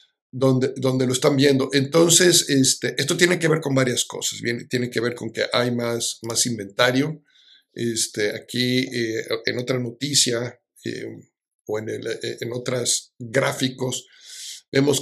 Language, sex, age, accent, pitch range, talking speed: Spanish, male, 50-69, Mexican, 125-145 Hz, 135 wpm